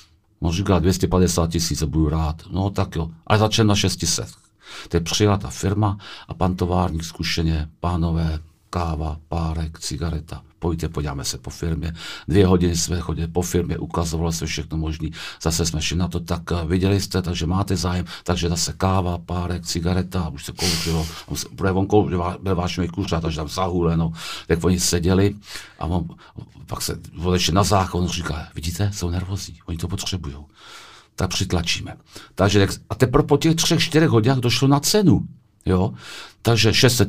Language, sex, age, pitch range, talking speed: Czech, male, 50-69, 85-105 Hz, 165 wpm